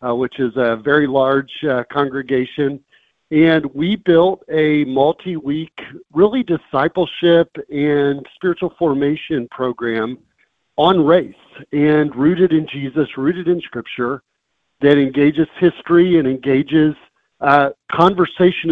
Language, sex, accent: English, male, American